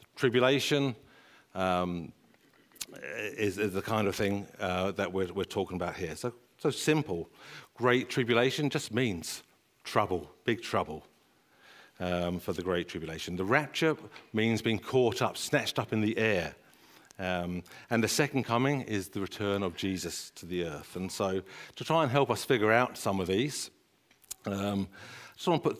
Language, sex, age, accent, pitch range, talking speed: English, male, 50-69, British, 95-125 Hz, 165 wpm